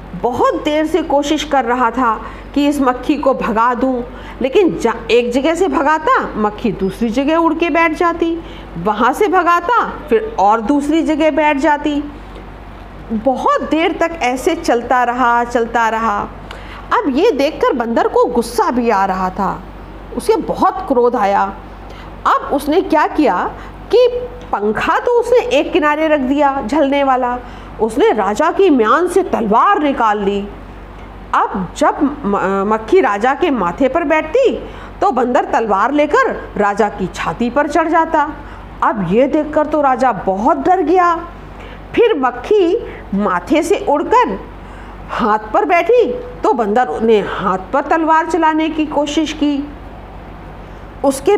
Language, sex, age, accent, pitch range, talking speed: Hindi, female, 50-69, native, 240-345 Hz, 145 wpm